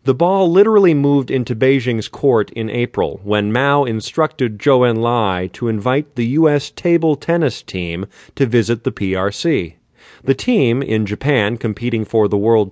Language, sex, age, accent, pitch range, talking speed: English, male, 40-59, American, 105-140 Hz, 155 wpm